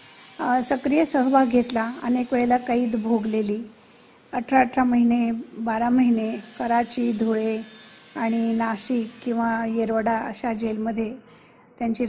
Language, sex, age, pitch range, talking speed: Marathi, female, 50-69, 225-255 Hz, 105 wpm